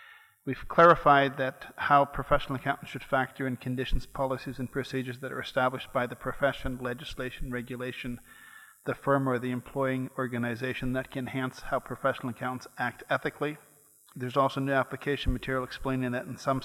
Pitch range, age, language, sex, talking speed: 125-140 Hz, 40-59, English, male, 160 wpm